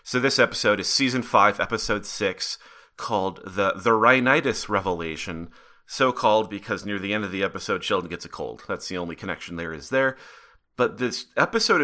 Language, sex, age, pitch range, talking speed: English, male, 30-49, 95-115 Hz, 175 wpm